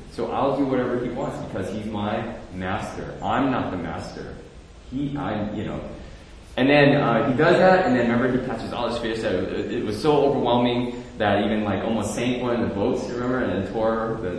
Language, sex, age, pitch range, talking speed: English, male, 20-39, 90-125 Hz, 215 wpm